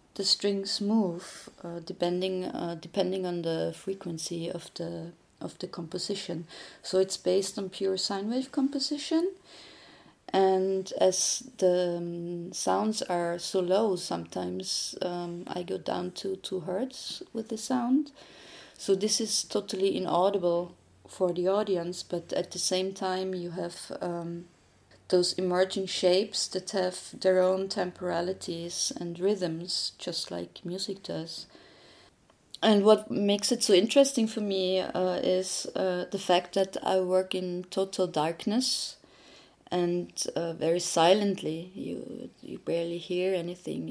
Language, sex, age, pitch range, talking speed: French, female, 30-49, 175-200 Hz, 135 wpm